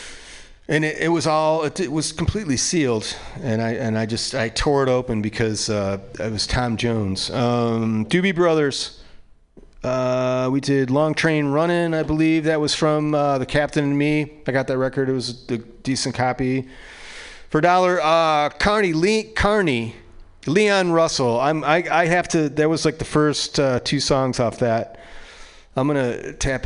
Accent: American